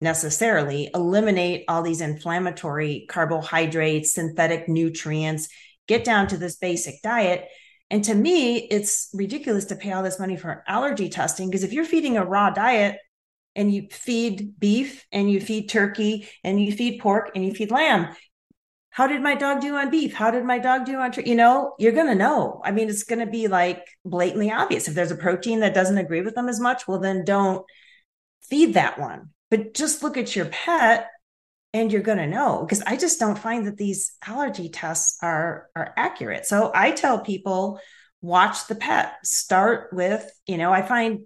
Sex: female